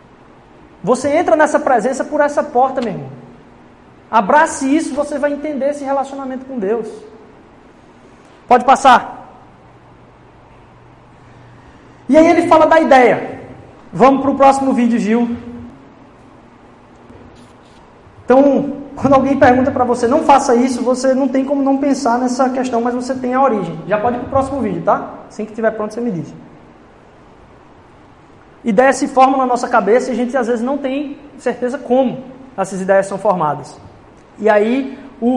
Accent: Brazilian